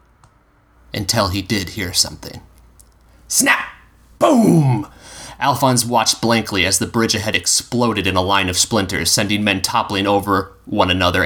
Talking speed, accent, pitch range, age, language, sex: 140 wpm, American, 90-110 Hz, 30-49, English, male